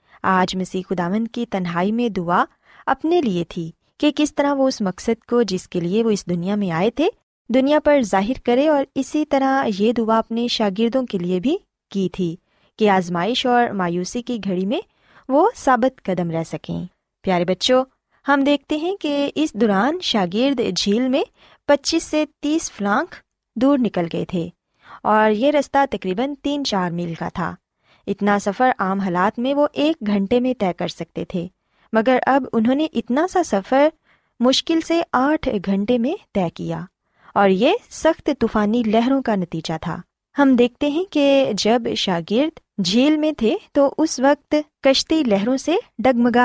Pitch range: 190-280 Hz